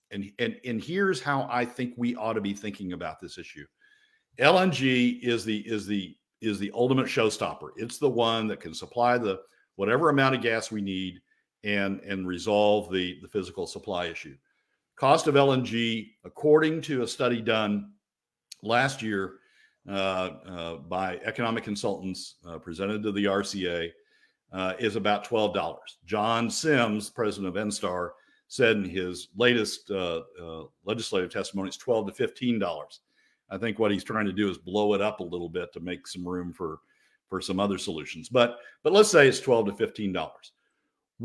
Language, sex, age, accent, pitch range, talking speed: English, male, 50-69, American, 95-125 Hz, 170 wpm